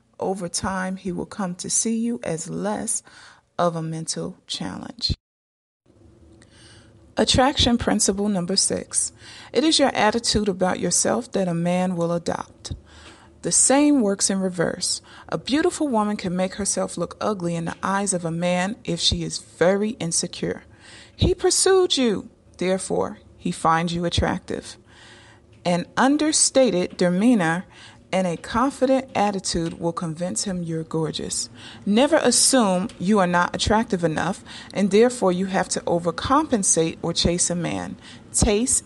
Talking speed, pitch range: 140 wpm, 165-210 Hz